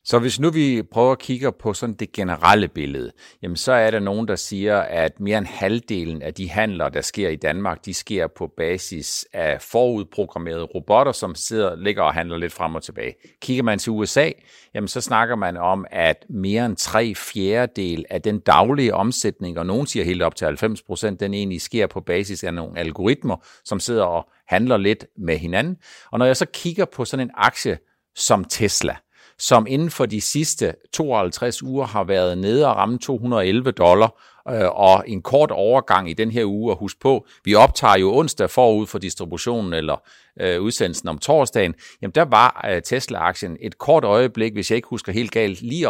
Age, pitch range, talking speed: 50-69, 95-120 Hz, 195 wpm